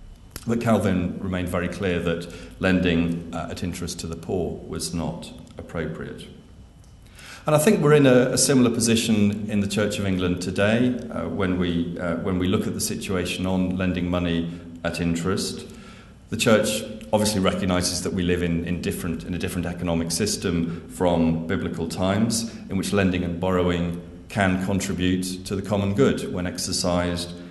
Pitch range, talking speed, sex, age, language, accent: 85-95 Hz, 170 wpm, male, 40-59, English, British